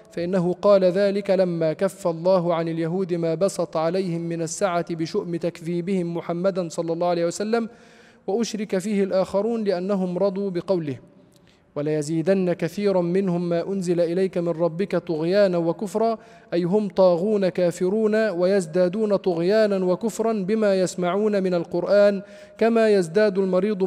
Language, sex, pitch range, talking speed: Arabic, male, 175-205 Hz, 125 wpm